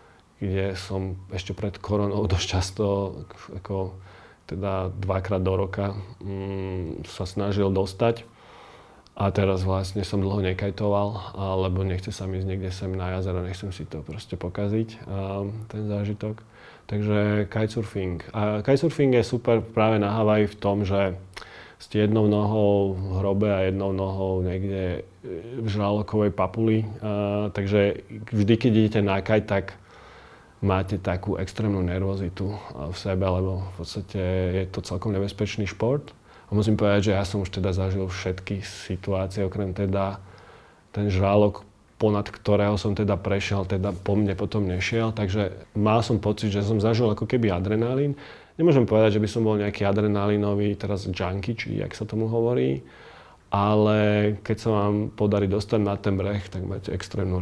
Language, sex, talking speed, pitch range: Slovak, male, 150 wpm, 95-105 Hz